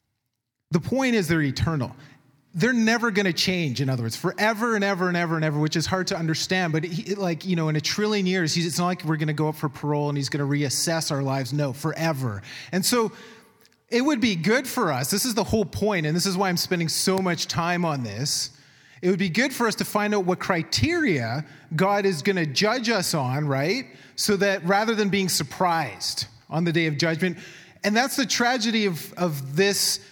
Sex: male